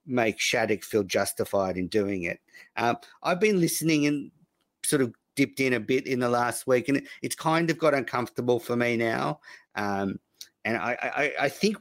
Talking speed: 195 wpm